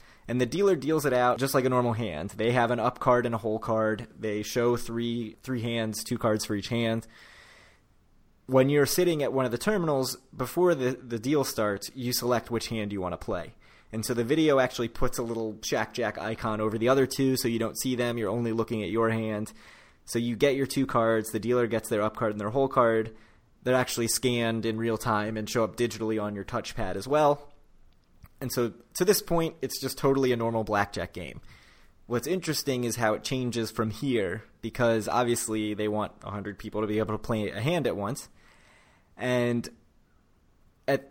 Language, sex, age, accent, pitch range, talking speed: English, male, 20-39, American, 110-130 Hz, 210 wpm